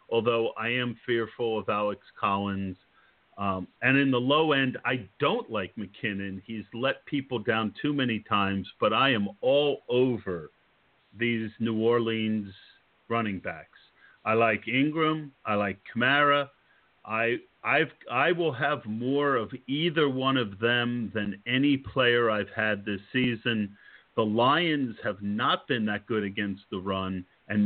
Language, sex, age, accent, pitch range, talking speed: English, male, 50-69, American, 105-135 Hz, 150 wpm